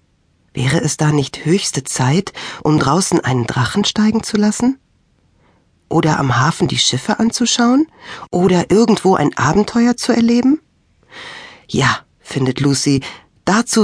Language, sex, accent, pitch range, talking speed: German, female, German, 135-215 Hz, 125 wpm